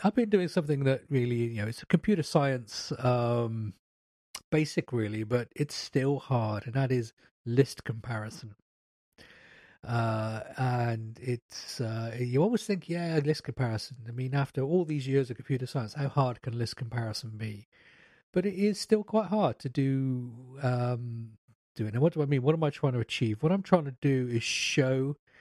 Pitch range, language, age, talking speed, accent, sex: 110-140 Hz, English, 40-59, 185 wpm, British, male